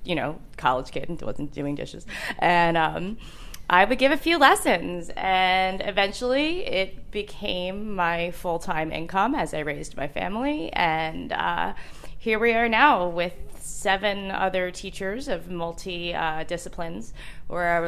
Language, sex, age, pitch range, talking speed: English, female, 20-39, 170-210 Hz, 150 wpm